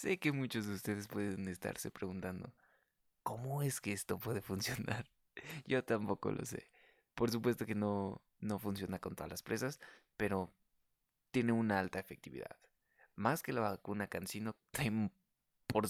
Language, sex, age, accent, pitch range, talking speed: Spanish, male, 20-39, Mexican, 95-115 Hz, 145 wpm